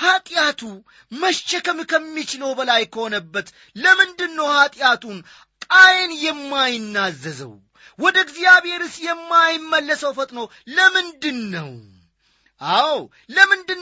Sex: male